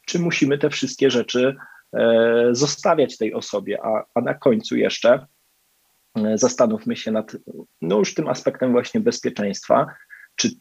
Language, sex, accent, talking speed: Polish, male, native, 130 wpm